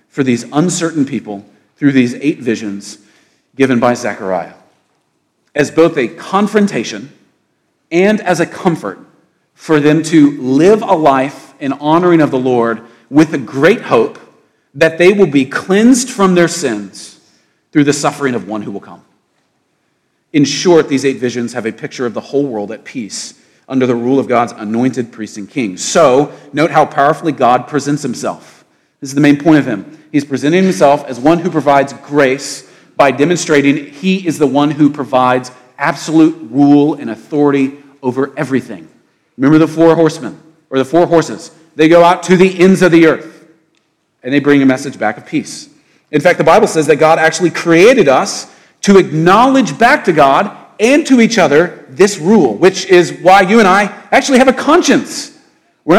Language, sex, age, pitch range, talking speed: English, male, 40-59, 130-170 Hz, 180 wpm